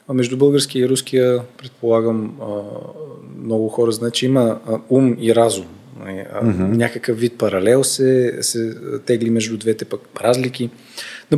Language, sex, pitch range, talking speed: Bulgarian, male, 120-150 Hz, 125 wpm